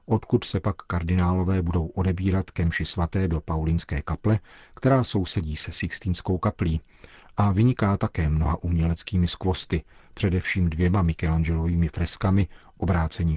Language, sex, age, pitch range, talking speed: Czech, male, 40-59, 85-100 Hz, 120 wpm